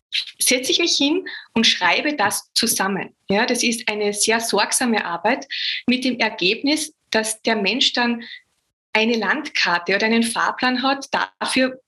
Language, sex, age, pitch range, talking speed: German, female, 20-39, 215-255 Hz, 145 wpm